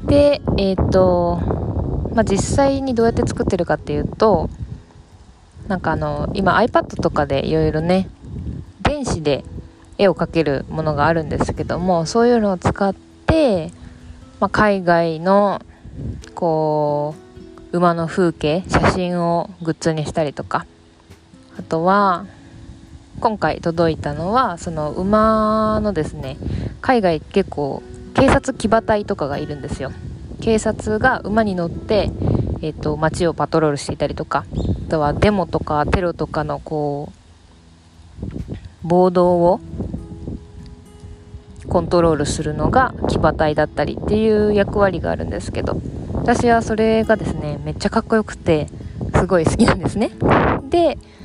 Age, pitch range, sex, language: 20-39, 150-205 Hz, female, Japanese